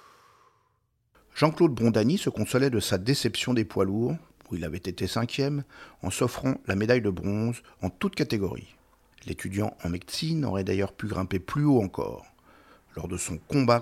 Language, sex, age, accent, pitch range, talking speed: French, male, 50-69, French, 95-125 Hz, 165 wpm